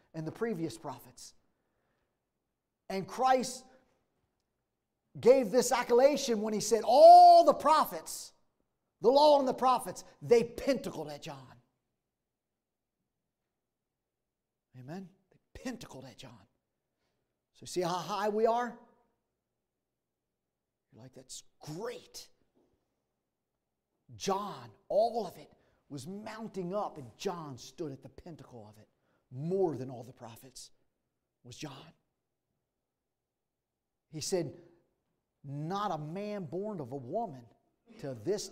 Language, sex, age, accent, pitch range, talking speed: English, male, 40-59, American, 135-210 Hz, 110 wpm